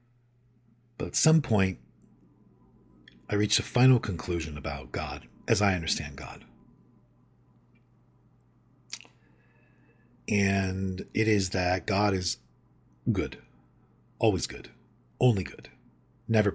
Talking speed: 100 wpm